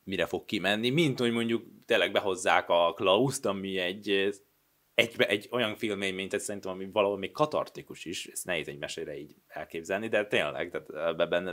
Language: Hungarian